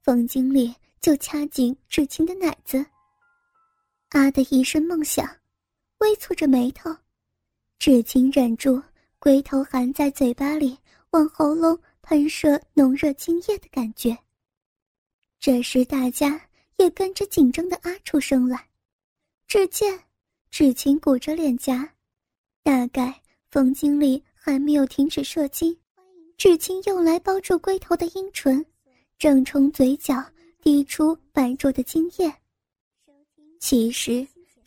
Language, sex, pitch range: Chinese, male, 265-335 Hz